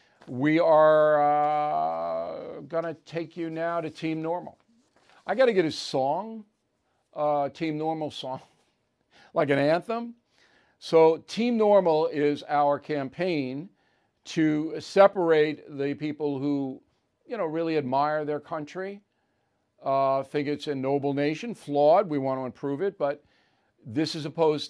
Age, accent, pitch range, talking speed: 50-69, American, 135-160 Hz, 135 wpm